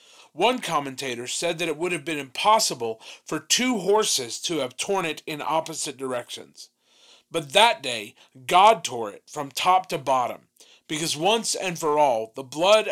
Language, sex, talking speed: English, male, 165 wpm